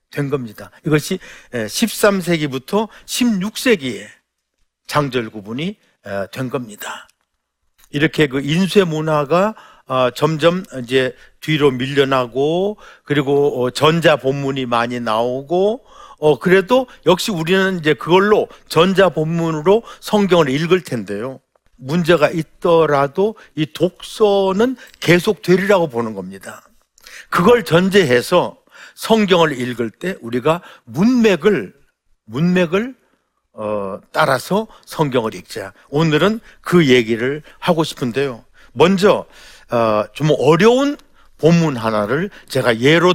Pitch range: 130-195 Hz